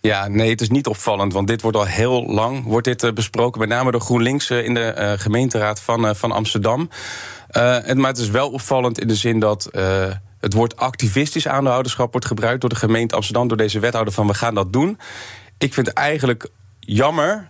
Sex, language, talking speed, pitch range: male, Dutch, 210 wpm, 105-125 Hz